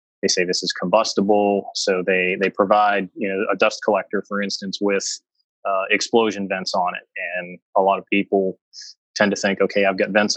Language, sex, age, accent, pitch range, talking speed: English, male, 20-39, American, 95-110 Hz, 195 wpm